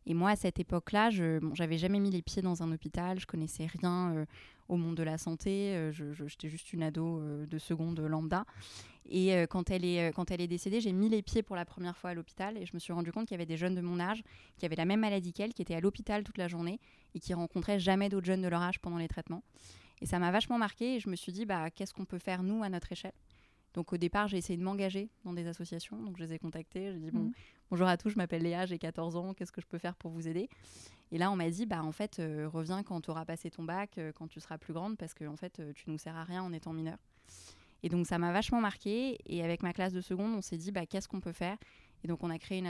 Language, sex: French, female